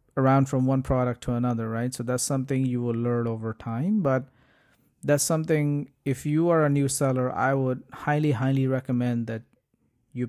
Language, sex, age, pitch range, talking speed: English, male, 30-49, 120-140 Hz, 180 wpm